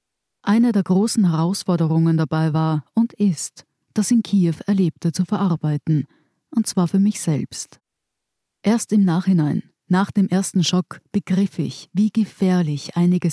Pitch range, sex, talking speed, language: 170-205 Hz, female, 140 wpm, German